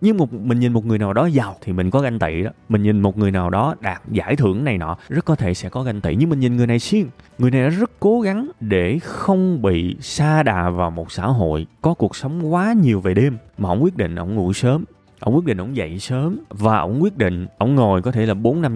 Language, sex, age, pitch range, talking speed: Vietnamese, male, 20-39, 95-140 Hz, 270 wpm